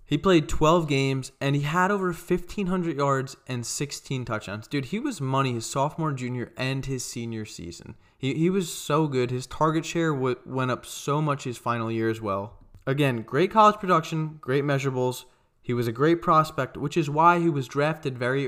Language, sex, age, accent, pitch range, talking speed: English, male, 20-39, American, 120-145 Hz, 190 wpm